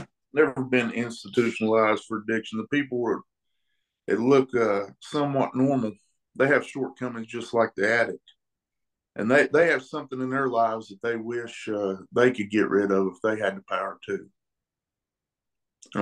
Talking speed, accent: 165 wpm, American